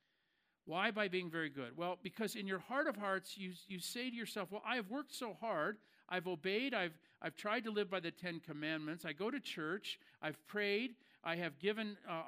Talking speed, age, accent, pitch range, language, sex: 215 wpm, 50-69, American, 150-200 Hz, English, male